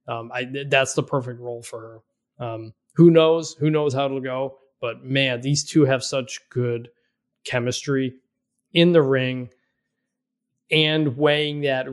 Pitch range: 125-150 Hz